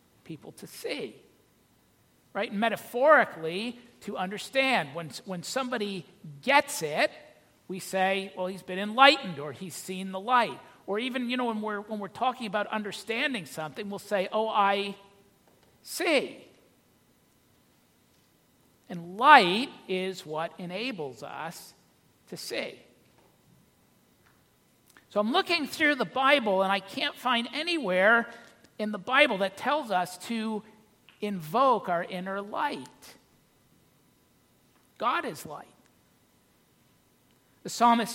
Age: 50-69